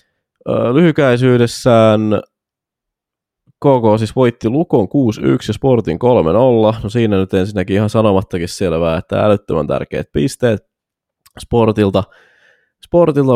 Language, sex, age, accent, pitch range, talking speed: Finnish, male, 20-39, native, 90-115 Hz, 100 wpm